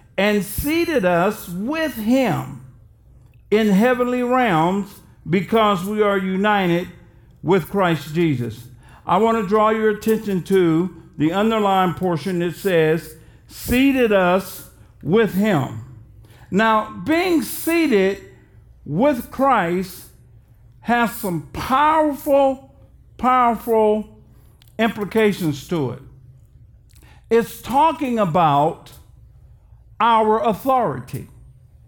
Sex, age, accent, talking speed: male, 50-69, American, 90 wpm